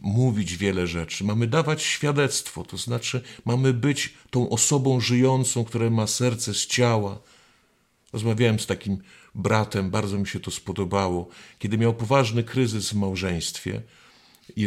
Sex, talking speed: male, 140 wpm